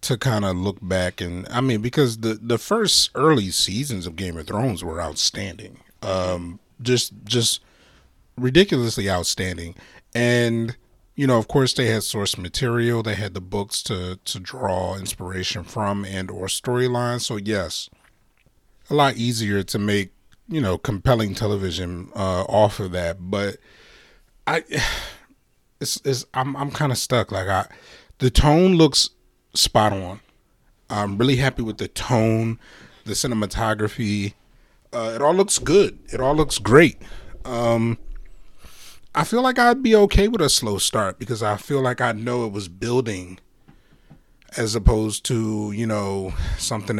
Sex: male